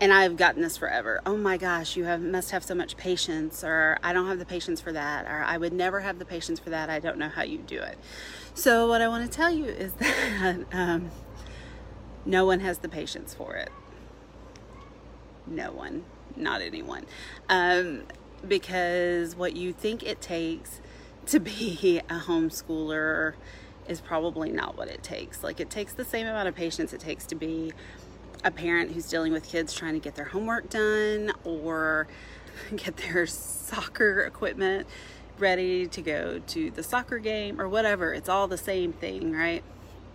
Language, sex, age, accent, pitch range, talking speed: English, female, 30-49, American, 165-205 Hz, 180 wpm